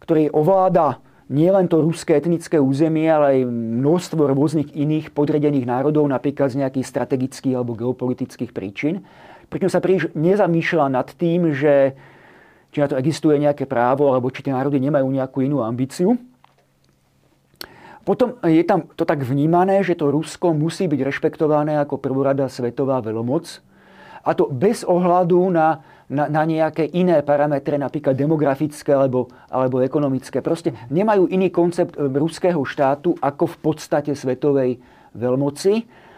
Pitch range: 135-165 Hz